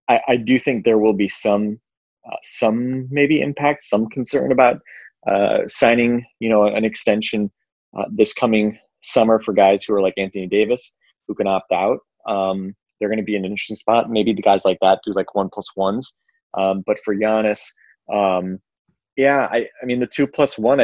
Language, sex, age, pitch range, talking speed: English, male, 20-39, 95-110 Hz, 195 wpm